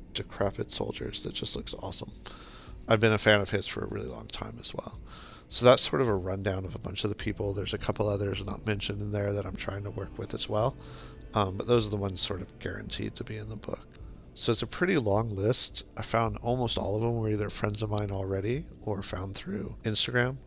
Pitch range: 100-110 Hz